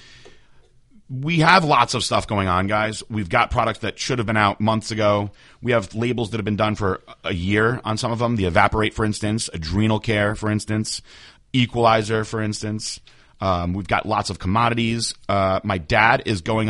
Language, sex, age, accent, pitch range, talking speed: English, male, 30-49, American, 105-120 Hz, 195 wpm